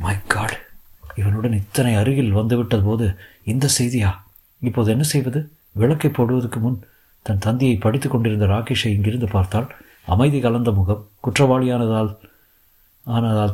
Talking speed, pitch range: 120 wpm, 100-130 Hz